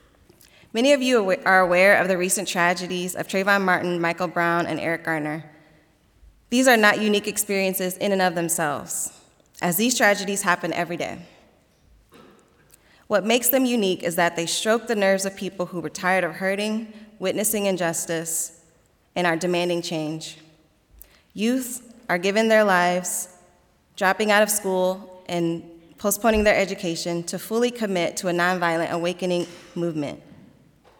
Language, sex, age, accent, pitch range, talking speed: English, female, 20-39, American, 170-205 Hz, 145 wpm